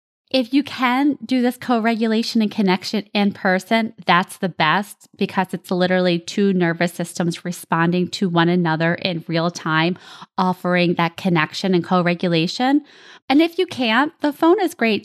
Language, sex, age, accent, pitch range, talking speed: English, female, 20-39, American, 185-245 Hz, 155 wpm